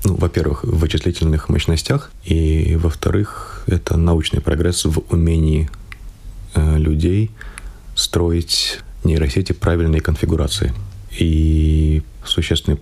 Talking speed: 90 wpm